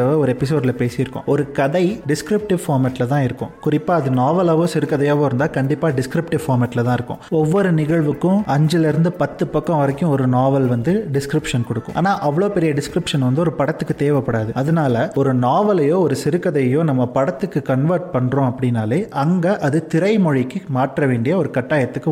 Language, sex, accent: Tamil, male, native